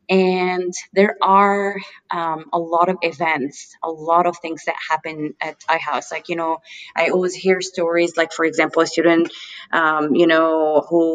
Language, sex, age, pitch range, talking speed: German, female, 20-39, 155-180 Hz, 170 wpm